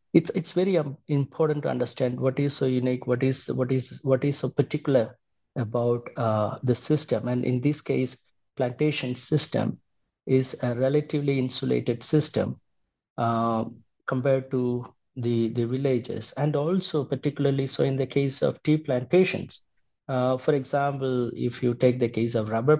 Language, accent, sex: English, Indian, male